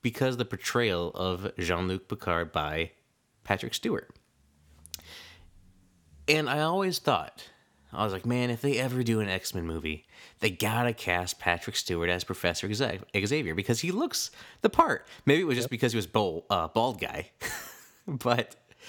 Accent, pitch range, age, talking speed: American, 90-120 Hz, 30-49, 160 wpm